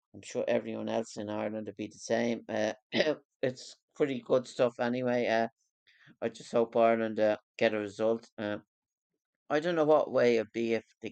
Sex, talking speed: male, 195 wpm